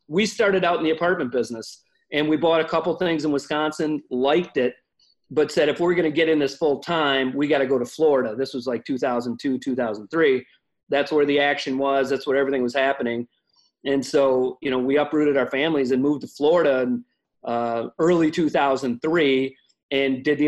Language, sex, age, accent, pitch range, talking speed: English, male, 40-59, American, 135-160 Hz, 200 wpm